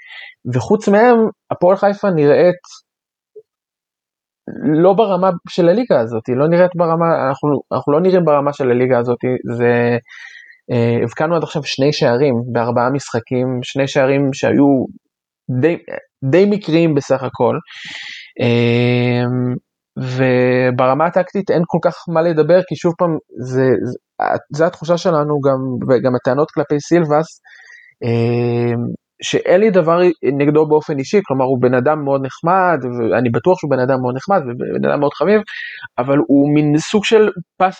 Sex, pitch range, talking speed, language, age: male, 125-175 Hz, 135 wpm, Hebrew, 20-39